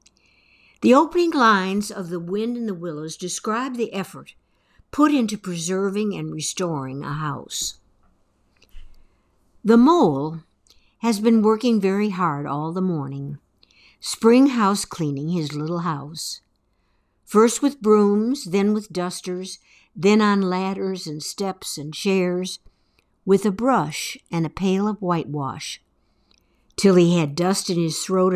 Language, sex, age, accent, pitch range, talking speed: English, female, 60-79, American, 150-200 Hz, 130 wpm